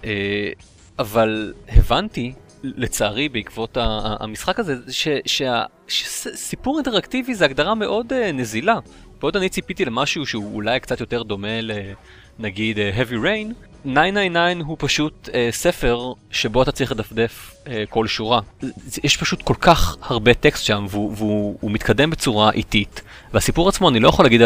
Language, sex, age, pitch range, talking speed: Hebrew, male, 30-49, 105-135 Hz, 155 wpm